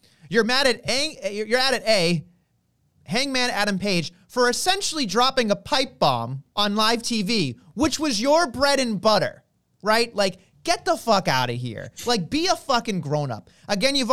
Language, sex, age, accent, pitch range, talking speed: English, male, 30-49, American, 185-255 Hz, 180 wpm